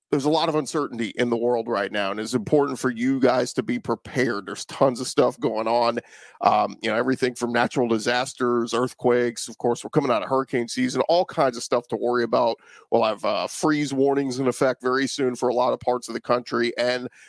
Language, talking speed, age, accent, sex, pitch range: English, 230 wpm, 40-59, American, male, 120-150 Hz